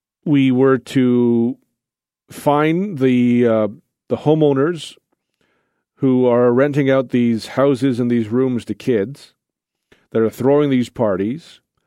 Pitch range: 115-140 Hz